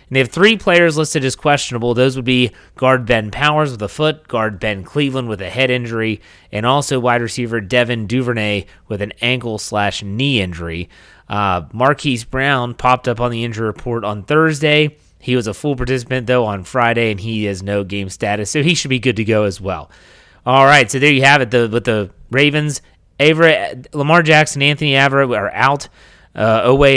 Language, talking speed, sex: English, 195 wpm, male